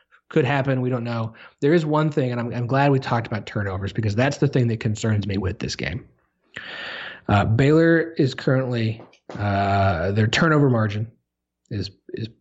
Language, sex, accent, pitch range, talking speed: English, male, American, 105-130 Hz, 180 wpm